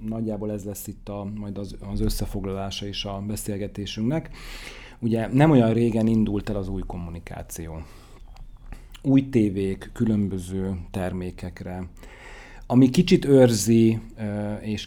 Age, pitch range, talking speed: 40-59, 95-115 Hz, 115 wpm